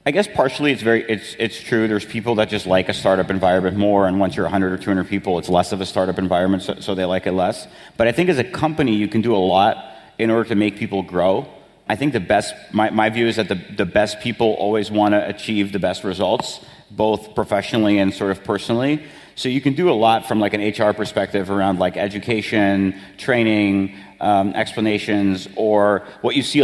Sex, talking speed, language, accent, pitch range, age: male, 225 wpm, English, American, 100-115 Hz, 30-49